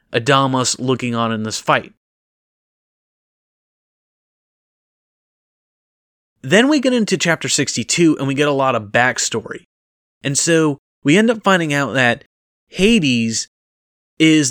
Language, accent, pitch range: English, American, 115-145 Hz